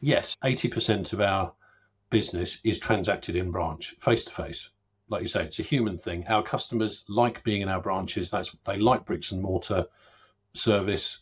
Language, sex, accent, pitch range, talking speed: English, male, British, 90-110 Hz, 165 wpm